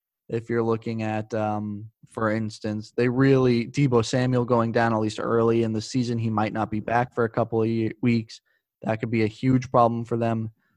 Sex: male